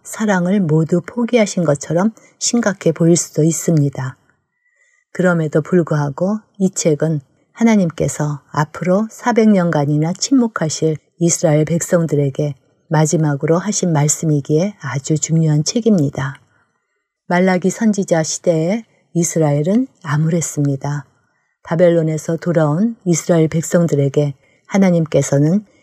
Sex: female